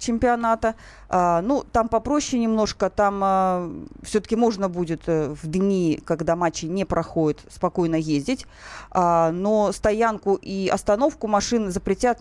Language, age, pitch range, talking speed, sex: Russian, 30-49, 175-215 Hz, 130 wpm, female